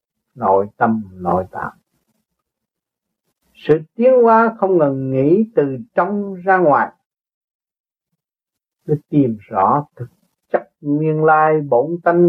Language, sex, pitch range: Vietnamese, male, 130-175 Hz